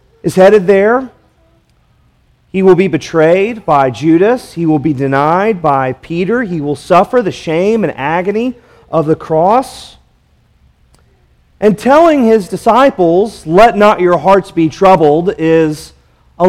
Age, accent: 40-59, American